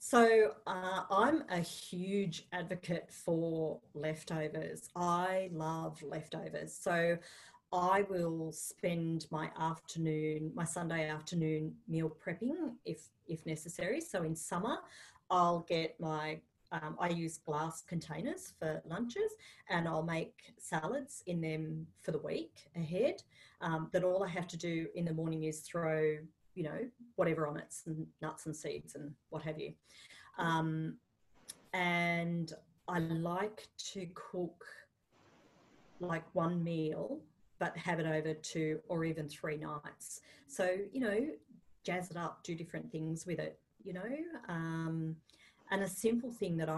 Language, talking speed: English, 140 wpm